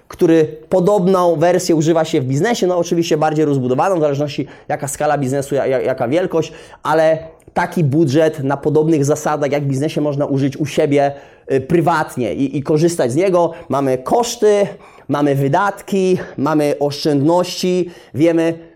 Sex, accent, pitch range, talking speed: male, native, 140-170 Hz, 140 wpm